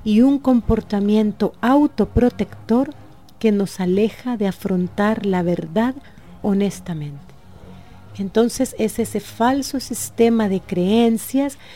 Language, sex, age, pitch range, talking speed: Spanish, female, 40-59, 190-230 Hz, 95 wpm